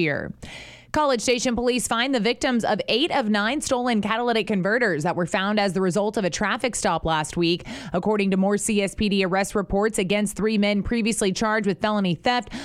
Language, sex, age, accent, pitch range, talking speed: English, female, 20-39, American, 190-230 Hz, 185 wpm